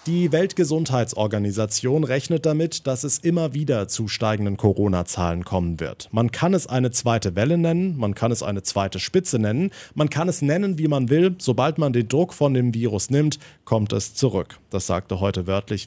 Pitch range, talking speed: 105-140 Hz, 185 wpm